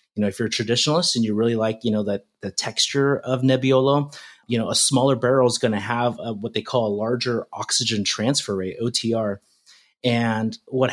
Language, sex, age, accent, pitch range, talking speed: English, male, 30-49, American, 105-125 Hz, 210 wpm